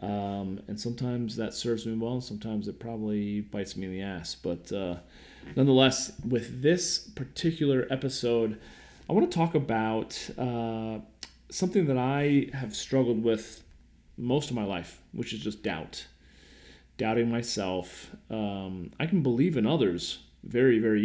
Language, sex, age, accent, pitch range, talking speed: English, male, 30-49, American, 95-125 Hz, 150 wpm